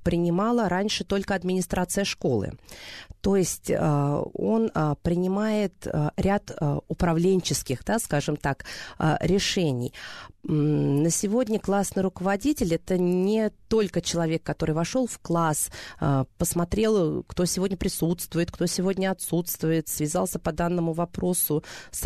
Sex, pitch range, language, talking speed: female, 160-195 Hz, Russian, 105 wpm